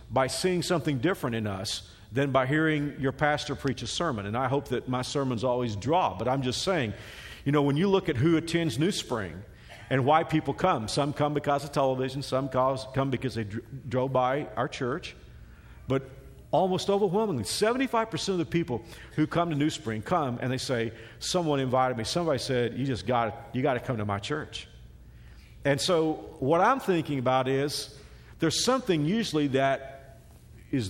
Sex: male